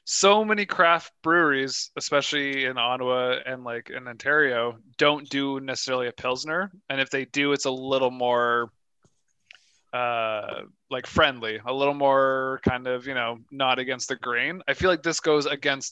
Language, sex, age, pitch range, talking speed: English, male, 20-39, 125-155 Hz, 165 wpm